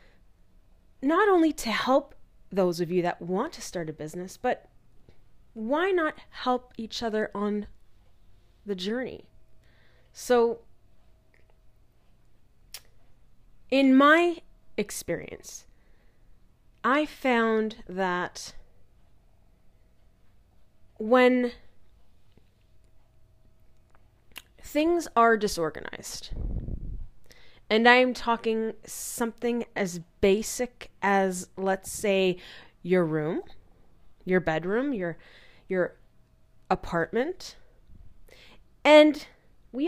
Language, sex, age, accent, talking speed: English, female, 30-49, American, 75 wpm